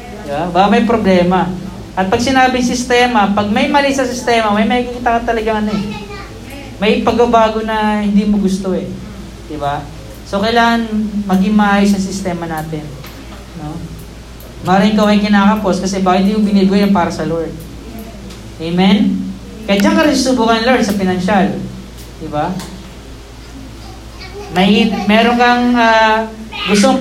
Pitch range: 185-240 Hz